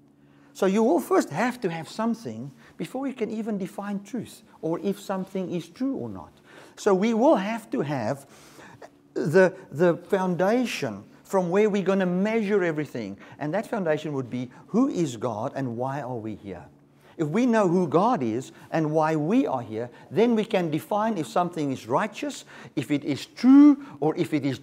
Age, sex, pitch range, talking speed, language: 50-69, male, 145-215 Hz, 190 wpm, English